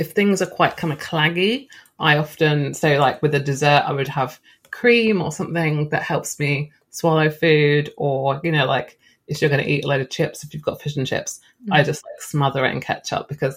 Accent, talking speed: British, 235 wpm